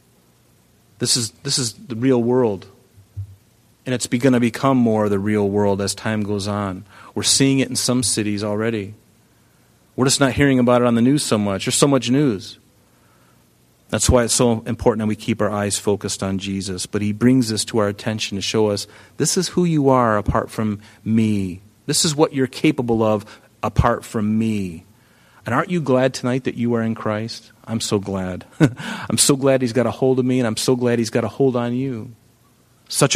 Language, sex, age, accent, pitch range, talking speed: English, male, 40-59, American, 105-145 Hz, 210 wpm